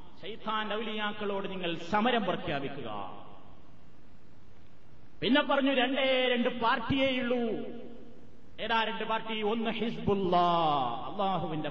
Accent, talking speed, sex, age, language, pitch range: native, 70 wpm, male, 30-49, Malayalam, 170-255 Hz